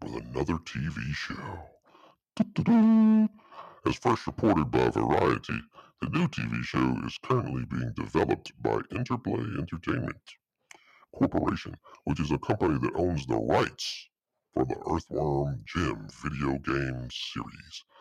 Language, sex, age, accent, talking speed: English, female, 60-79, American, 120 wpm